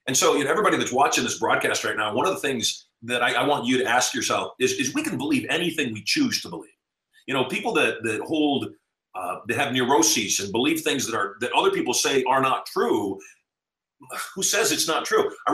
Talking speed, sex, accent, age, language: 235 wpm, male, American, 40-59, English